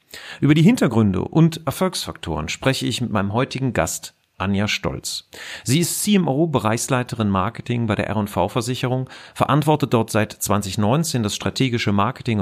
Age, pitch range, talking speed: 40-59, 105-145 Hz, 130 wpm